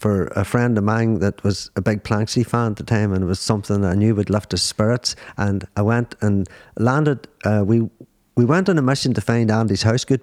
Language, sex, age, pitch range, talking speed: English, male, 50-69, 105-140 Hz, 240 wpm